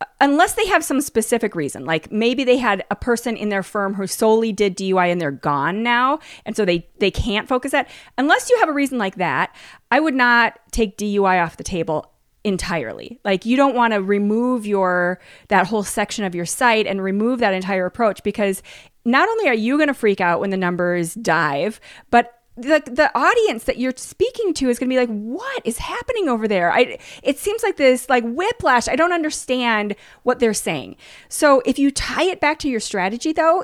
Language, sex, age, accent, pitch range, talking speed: English, female, 30-49, American, 200-260 Hz, 210 wpm